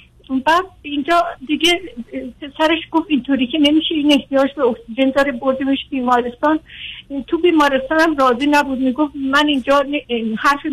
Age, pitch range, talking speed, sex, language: 50-69, 255-310 Hz, 135 wpm, female, Persian